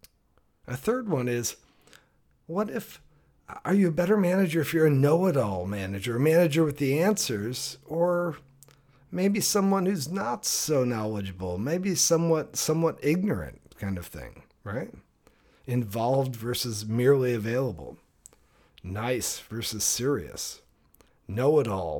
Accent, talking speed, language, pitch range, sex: American, 120 wpm, English, 105-155 Hz, male